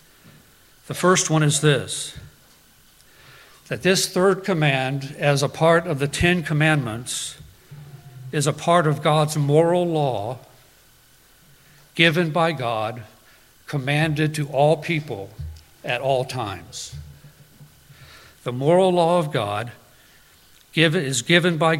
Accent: American